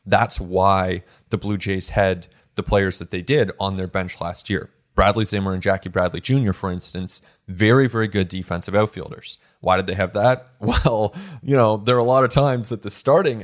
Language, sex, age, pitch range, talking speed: English, male, 20-39, 90-110 Hz, 205 wpm